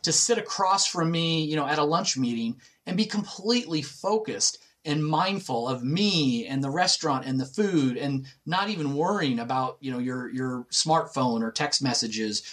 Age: 40-59